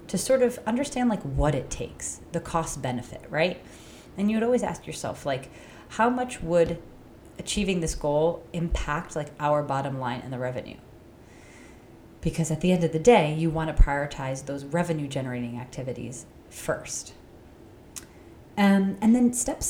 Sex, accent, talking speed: female, American, 160 wpm